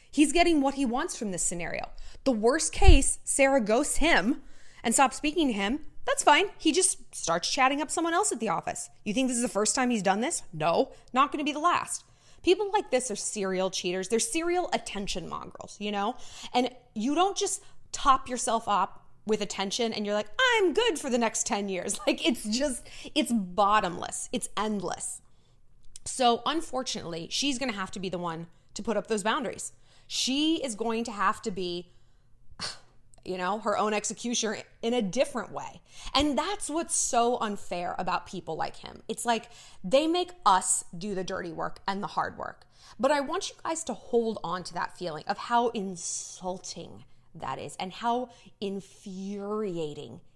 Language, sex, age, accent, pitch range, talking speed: English, female, 20-39, American, 190-275 Hz, 190 wpm